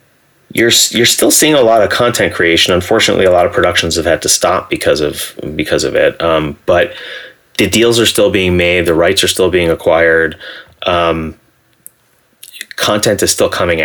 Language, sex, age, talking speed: English, male, 30-49, 180 wpm